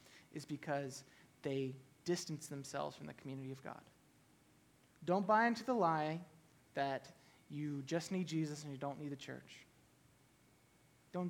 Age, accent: 20-39, American